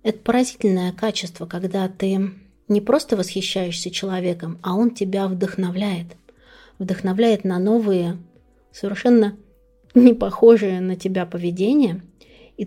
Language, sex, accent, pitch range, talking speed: Russian, female, native, 180-220 Hz, 110 wpm